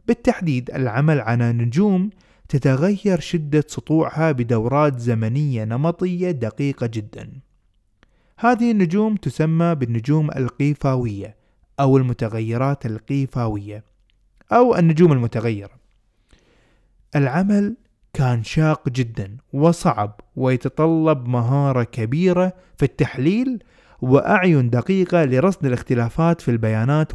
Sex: male